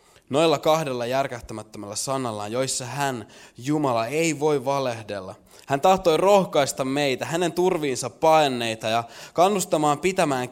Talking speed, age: 115 wpm, 20-39